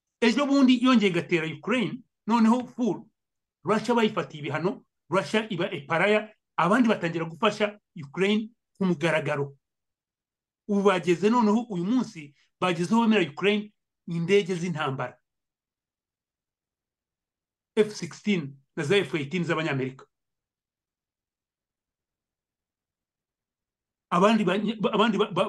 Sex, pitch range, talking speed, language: male, 170-230 Hz, 90 wpm, English